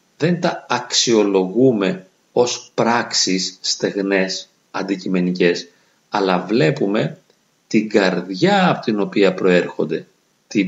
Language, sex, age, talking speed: Greek, male, 40-59, 90 wpm